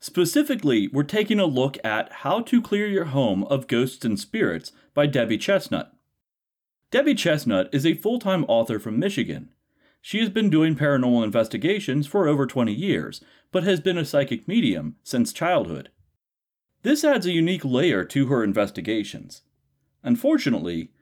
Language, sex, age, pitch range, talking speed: English, male, 30-49, 120-185 Hz, 150 wpm